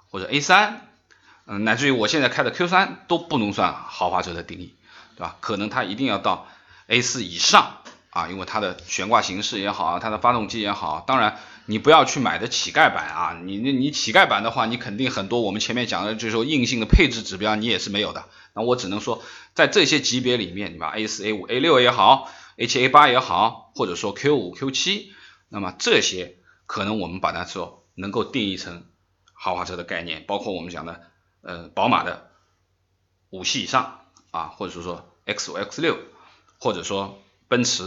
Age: 20-39